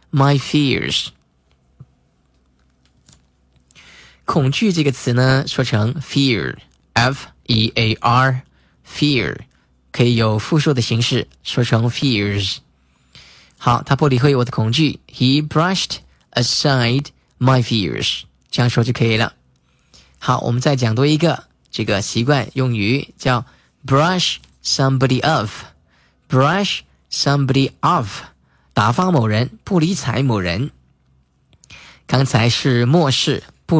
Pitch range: 105-145 Hz